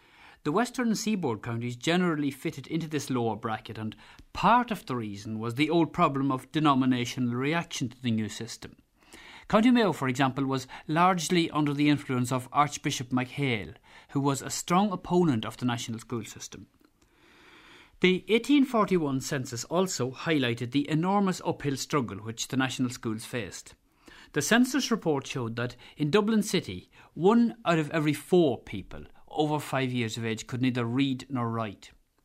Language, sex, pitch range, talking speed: English, male, 120-165 Hz, 160 wpm